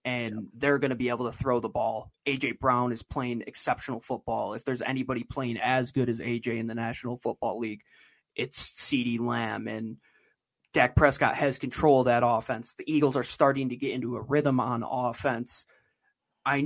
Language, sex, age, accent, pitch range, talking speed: English, male, 20-39, American, 125-150 Hz, 185 wpm